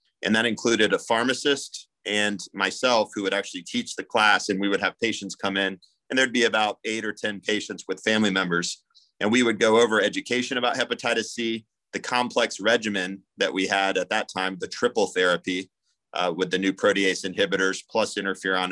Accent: American